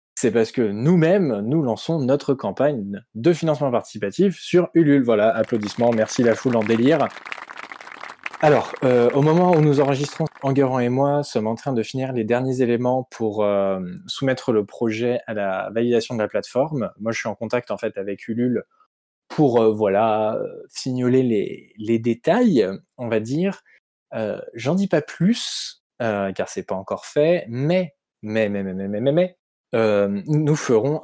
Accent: French